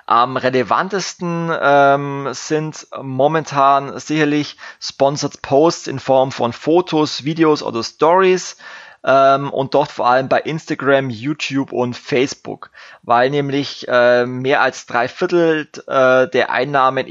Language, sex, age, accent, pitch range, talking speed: German, male, 20-39, German, 130-155 Hz, 120 wpm